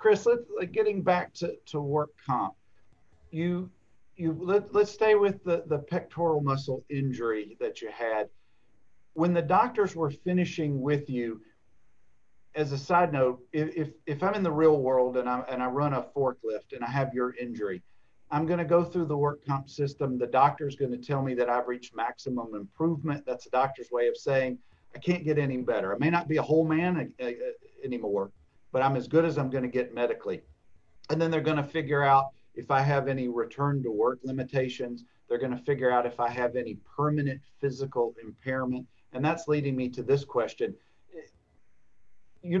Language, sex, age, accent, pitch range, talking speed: English, male, 50-69, American, 125-165 Hz, 190 wpm